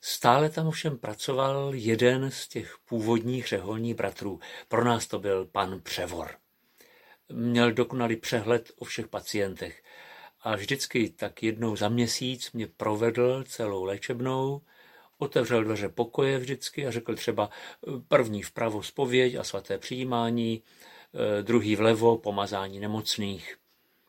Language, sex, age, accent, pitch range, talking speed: Czech, male, 50-69, native, 105-130 Hz, 125 wpm